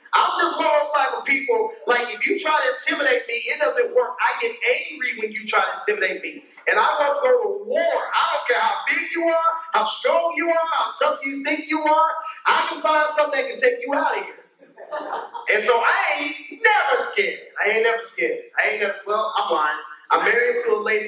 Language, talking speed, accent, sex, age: English, 230 wpm, American, male, 30-49